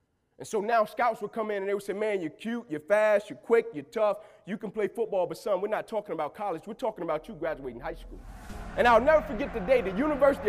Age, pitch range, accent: 30-49, 225-305 Hz, American